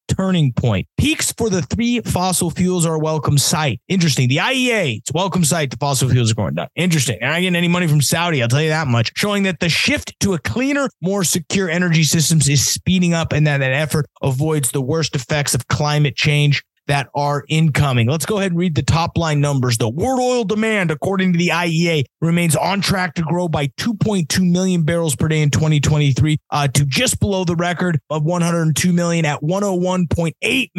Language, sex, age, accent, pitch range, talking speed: English, male, 30-49, American, 145-175 Hz, 210 wpm